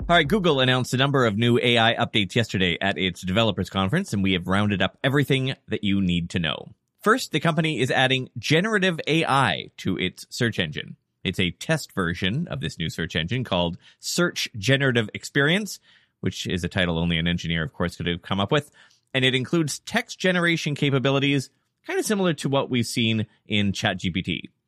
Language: English